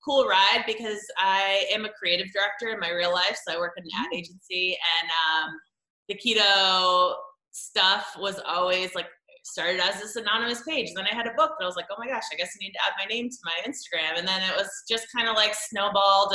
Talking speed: 235 wpm